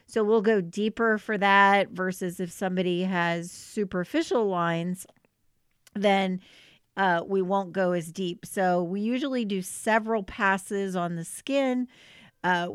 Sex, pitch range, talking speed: female, 180-220 Hz, 135 wpm